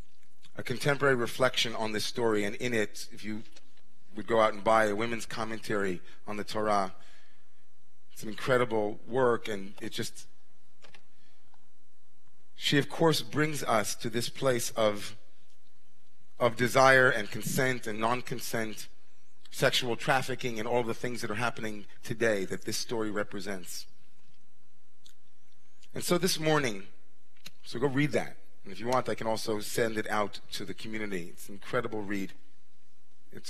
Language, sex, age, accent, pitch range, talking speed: English, male, 30-49, American, 105-125 Hz, 150 wpm